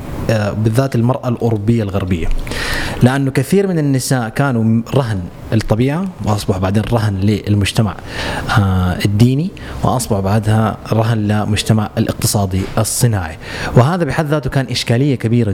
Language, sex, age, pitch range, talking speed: Arabic, male, 30-49, 105-125 Hz, 110 wpm